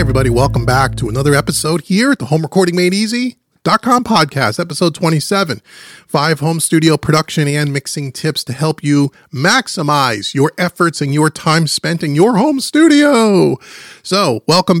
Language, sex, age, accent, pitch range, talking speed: English, male, 30-49, American, 130-165 Hz, 160 wpm